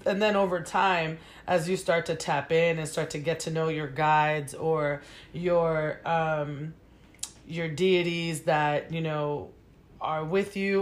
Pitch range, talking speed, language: 160-185 Hz, 160 wpm, English